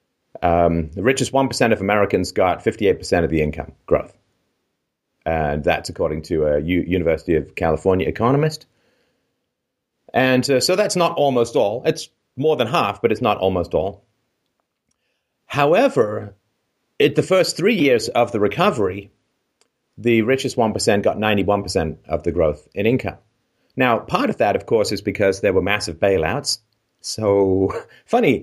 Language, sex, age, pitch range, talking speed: English, male, 30-49, 95-135 Hz, 145 wpm